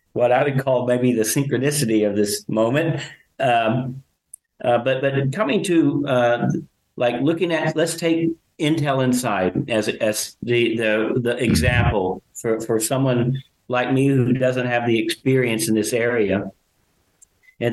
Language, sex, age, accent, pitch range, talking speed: English, male, 50-69, American, 115-140 Hz, 150 wpm